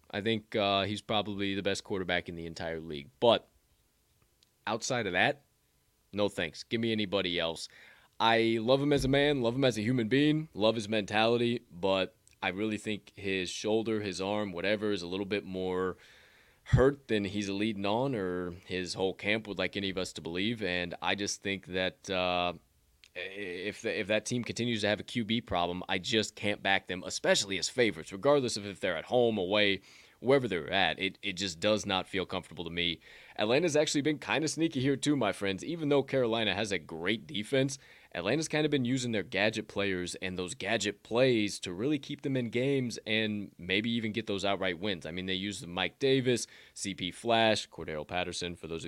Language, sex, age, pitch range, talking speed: English, male, 20-39, 95-120 Hz, 205 wpm